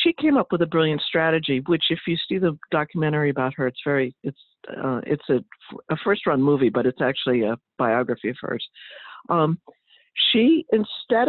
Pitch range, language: 160-230 Hz, English